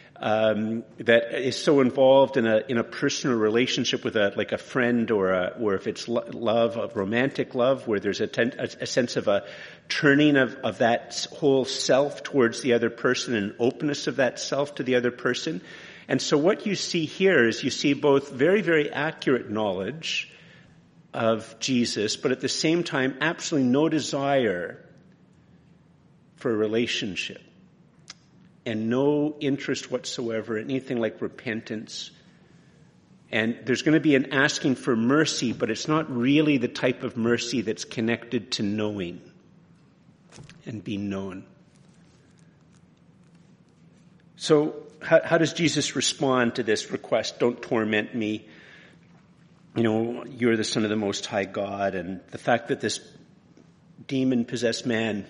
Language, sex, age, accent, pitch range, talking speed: English, male, 50-69, American, 115-150 Hz, 150 wpm